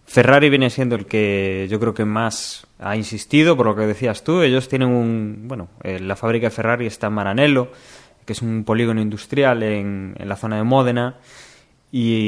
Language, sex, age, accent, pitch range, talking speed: Spanish, male, 20-39, Spanish, 105-120 Hz, 190 wpm